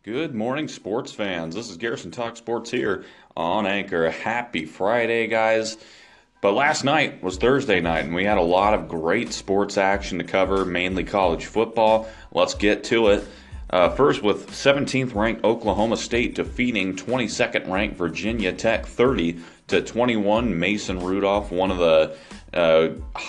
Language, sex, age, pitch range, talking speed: English, male, 30-49, 85-105 Hz, 155 wpm